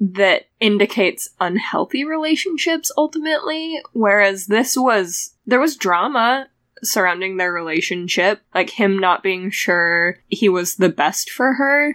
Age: 10-29